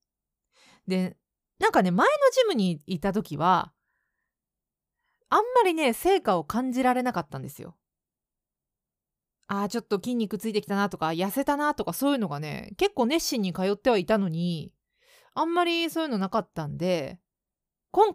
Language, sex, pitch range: Japanese, female, 185-290 Hz